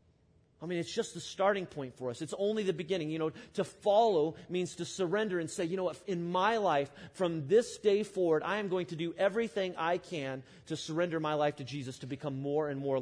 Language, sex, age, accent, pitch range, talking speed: English, male, 30-49, American, 145-185 Hz, 235 wpm